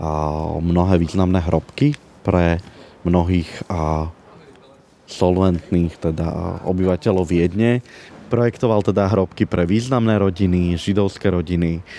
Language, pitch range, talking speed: Slovak, 85-105 Hz, 95 wpm